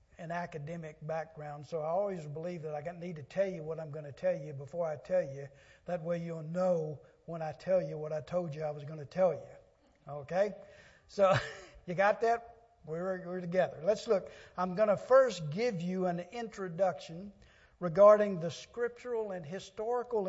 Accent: American